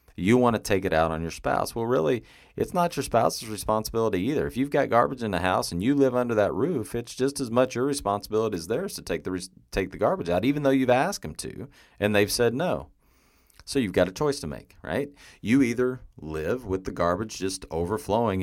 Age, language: 40-59, English